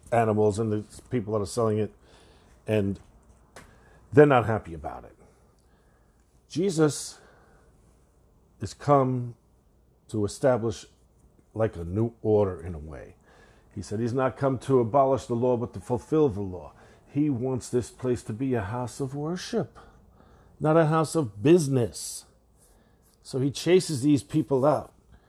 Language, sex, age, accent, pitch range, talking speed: English, male, 50-69, American, 90-130 Hz, 145 wpm